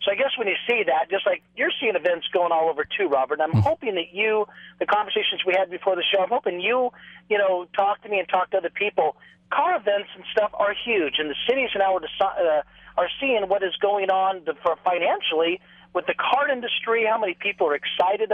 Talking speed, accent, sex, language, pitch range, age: 220 wpm, American, male, English, 160-205 Hz, 40-59